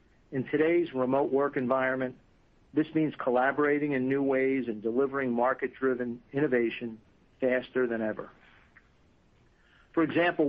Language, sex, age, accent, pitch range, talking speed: English, male, 50-69, American, 120-140 Hz, 115 wpm